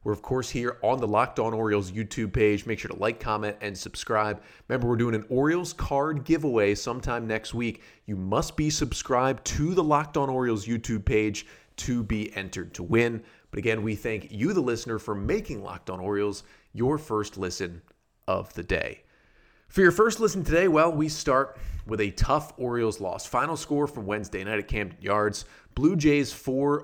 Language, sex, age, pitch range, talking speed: English, male, 30-49, 105-130 Hz, 190 wpm